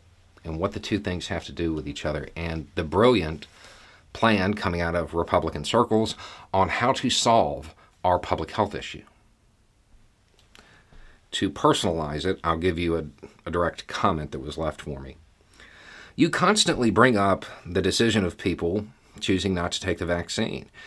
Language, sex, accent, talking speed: English, male, American, 165 wpm